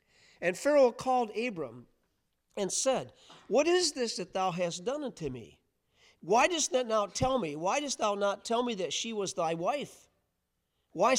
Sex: male